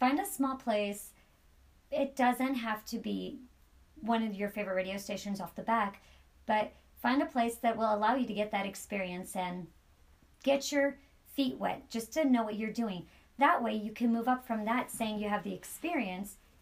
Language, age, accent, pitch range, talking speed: English, 40-59, American, 195-240 Hz, 195 wpm